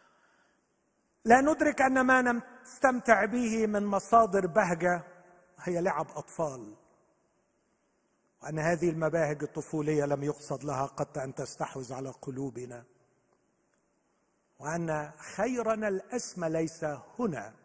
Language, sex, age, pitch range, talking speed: Arabic, male, 50-69, 140-190 Hz, 100 wpm